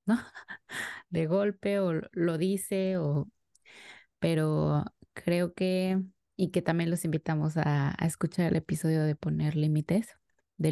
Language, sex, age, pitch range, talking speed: Spanish, female, 20-39, 150-180 Hz, 135 wpm